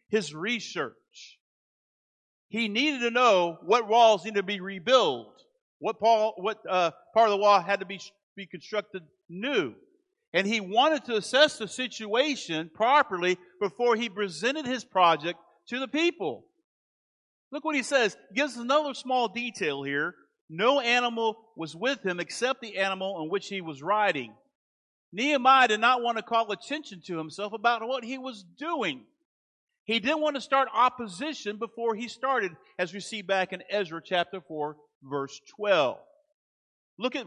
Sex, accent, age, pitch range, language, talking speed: male, American, 50-69, 185-265 Hz, English, 155 wpm